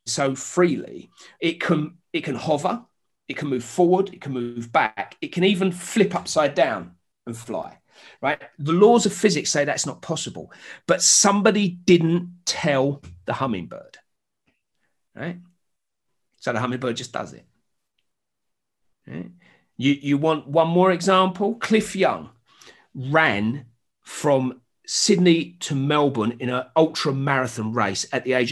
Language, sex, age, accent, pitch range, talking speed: English, male, 40-59, British, 125-170 Hz, 140 wpm